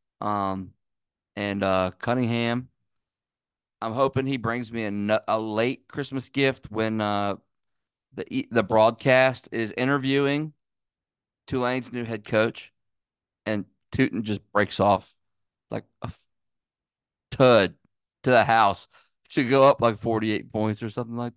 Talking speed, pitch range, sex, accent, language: 130 wpm, 100-125 Hz, male, American, English